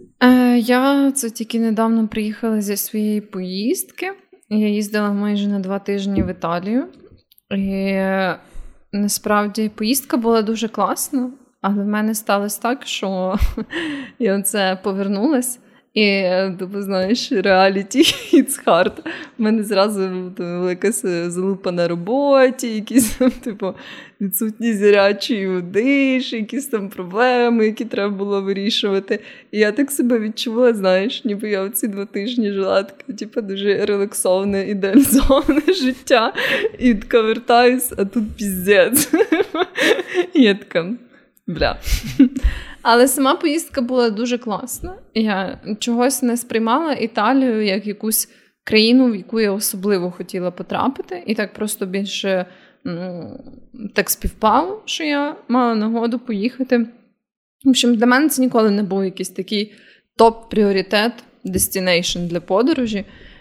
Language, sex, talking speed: Ukrainian, female, 125 wpm